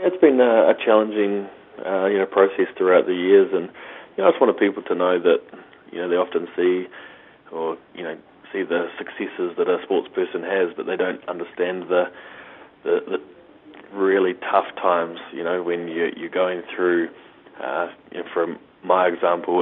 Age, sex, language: 20-39, male, English